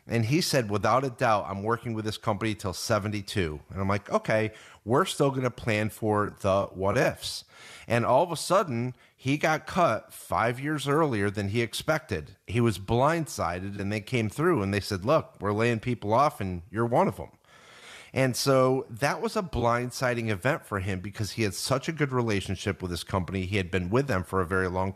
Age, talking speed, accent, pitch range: 40-59, 210 wpm, American, 105-135 Hz